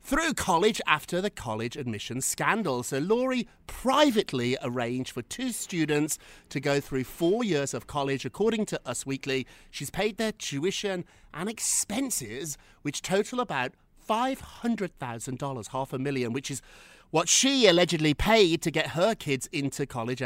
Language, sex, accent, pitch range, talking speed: English, male, British, 130-195 Hz, 150 wpm